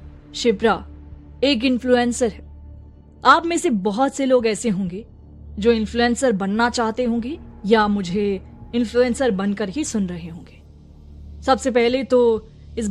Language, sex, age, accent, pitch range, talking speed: Hindi, female, 20-39, native, 190-260 Hz, 135 wpm